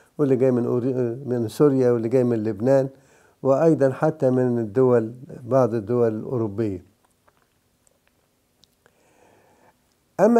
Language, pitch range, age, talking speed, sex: English, 125-165 Hz, 60-79, 100 wpm, male